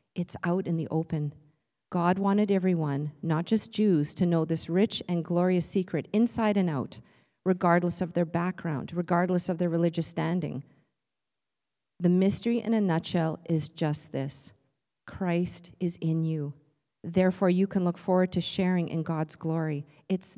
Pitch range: 150-185 Hz